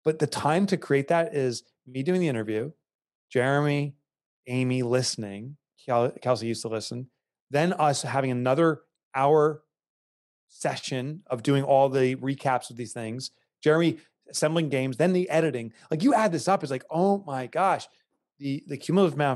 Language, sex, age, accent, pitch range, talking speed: English, male, 30-49, American, 115-150 Hz, 160 wpm